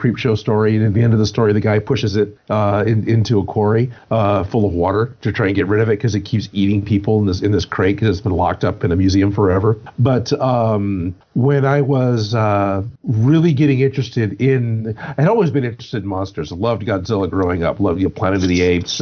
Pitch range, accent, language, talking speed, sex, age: 105-135 Hz, American, English, 245 wpm, male, 50-69